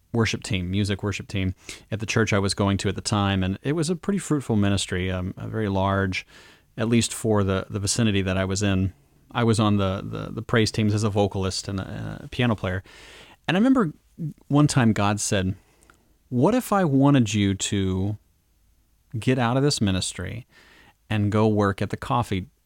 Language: English